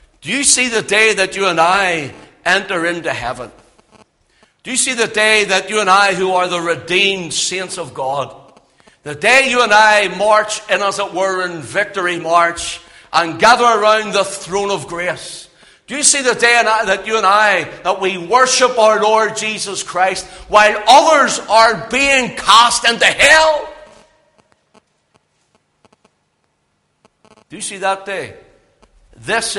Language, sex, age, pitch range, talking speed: English, male, 60-79, 165-215 Hz, 155 wpm